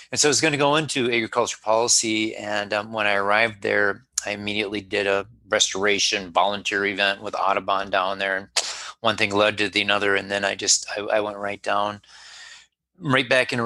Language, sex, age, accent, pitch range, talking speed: English, male, 30-49, American, 105-130 Hz, 200 wpm